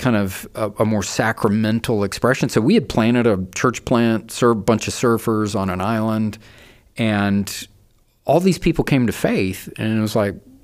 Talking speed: 185 wpm